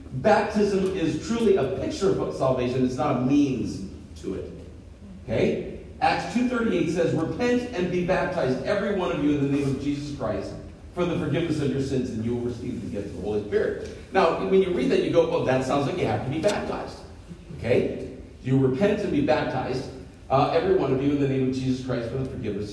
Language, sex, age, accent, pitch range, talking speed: English, male, 40-59, American, 130-180 Hz, 220 wpm